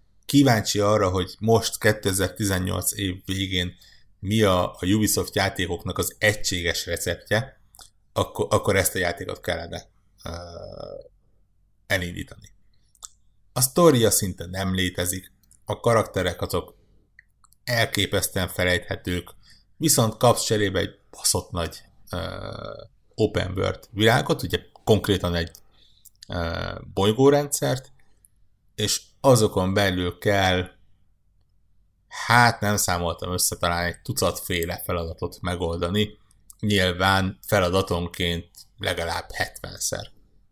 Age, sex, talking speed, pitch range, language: 60-79, male, 95 wpm, 90-105 Hz, Hungarian